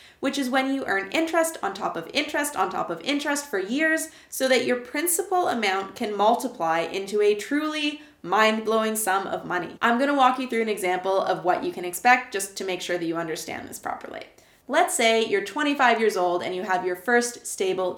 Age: 20-39